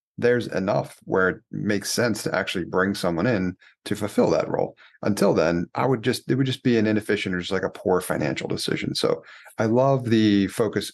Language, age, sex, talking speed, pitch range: English, 30-49, male, 210 wpm, 95-125 Hz